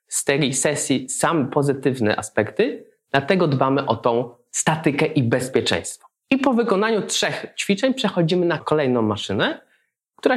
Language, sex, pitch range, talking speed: Polish, male, 115-160 Hz, 135 wpm